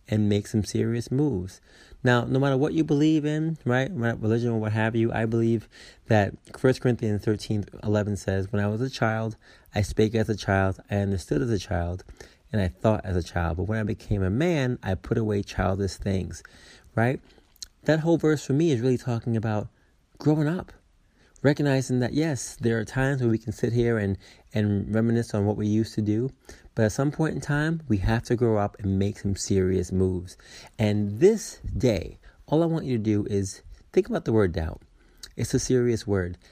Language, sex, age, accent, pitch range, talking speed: English, male, 30-49, American, 100-130 Hz, 205 wpm